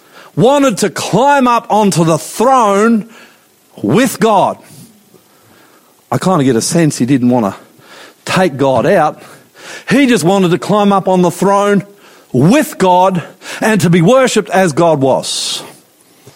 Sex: male